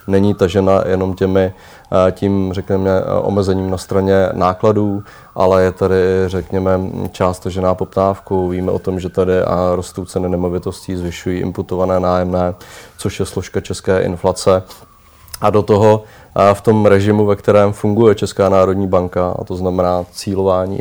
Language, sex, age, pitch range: Czech, male, 30-49, 90-100 Hz